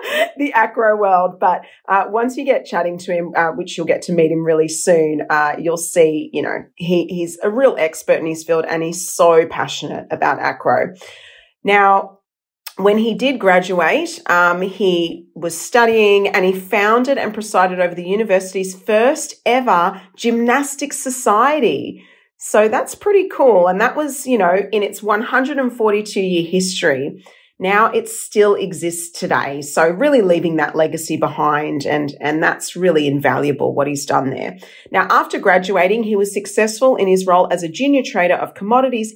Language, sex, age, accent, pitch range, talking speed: English, female, 40-59, Australian, 175-240 Hz, 165 wpm